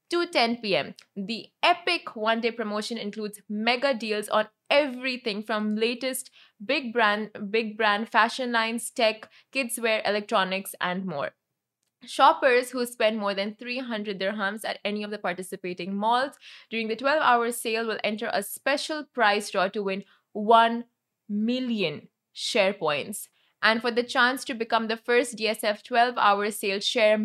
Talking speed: 150 wpm